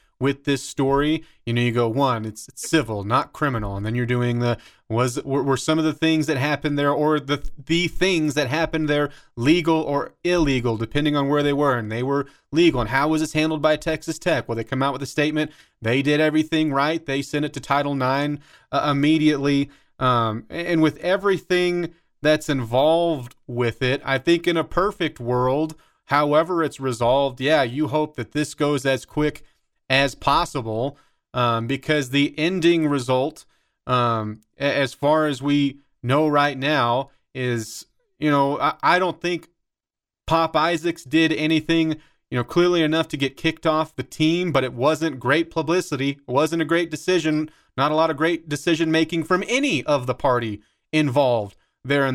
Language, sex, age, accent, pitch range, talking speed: English, male, 30-49, American, 135-160 Hz, 180 wpm